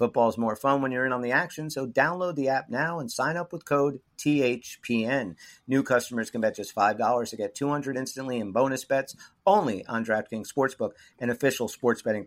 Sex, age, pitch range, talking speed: male, 50-69, 105-140 Hz, 200 wpm